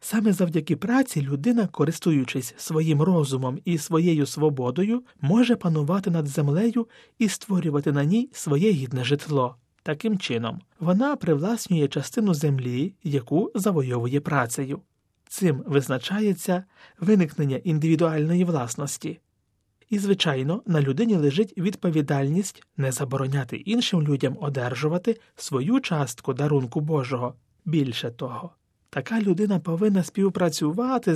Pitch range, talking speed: 140-195 Hz, 110 wpm